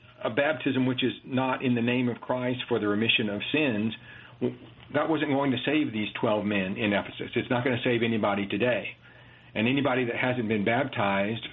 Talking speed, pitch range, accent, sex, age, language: 200 wpm, 105-125 Hz, American, male, 50-69, English